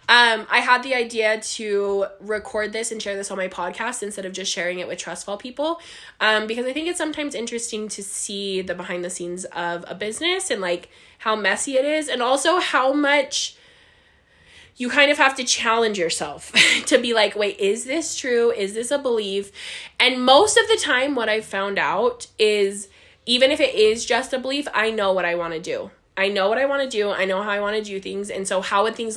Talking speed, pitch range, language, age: 225 wpm, 195-260 Hz, English, 20-39